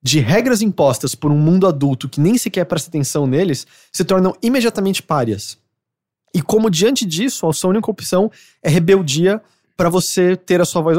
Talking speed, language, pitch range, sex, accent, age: 185 wpm, English, 130-185 Hz, male, Brazilian, 20-39